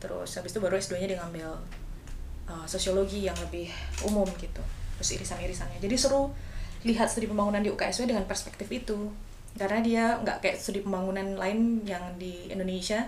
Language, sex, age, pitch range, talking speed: Indonesian, female, 20-39, 185-230 Hz, 160 wpm